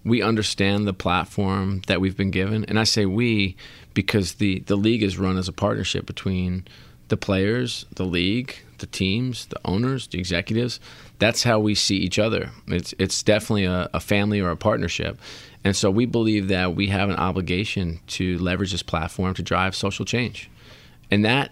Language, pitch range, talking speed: English, 95-115 Hz, 185 wpm